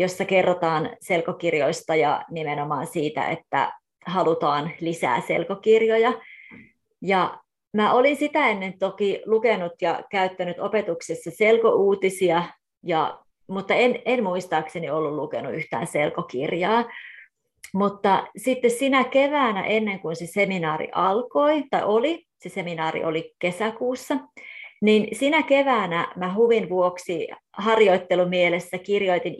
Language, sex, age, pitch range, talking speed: Finnish, female, 30-49, 170-225 Hz, 110 wpm